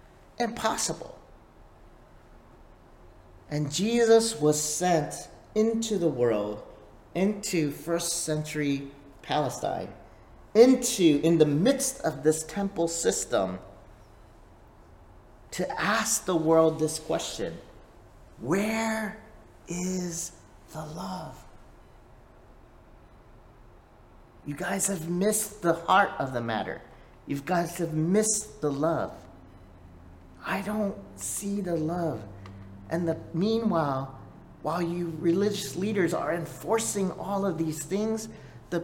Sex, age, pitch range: male, 40-59, 125-185 Hz